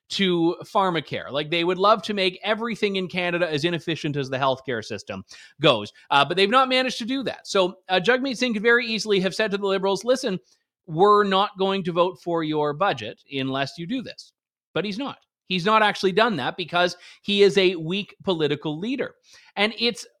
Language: English